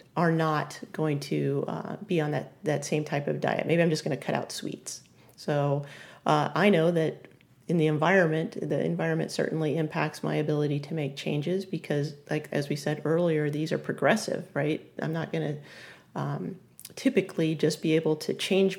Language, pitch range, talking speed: English, 155-180 Hz, 190 wpm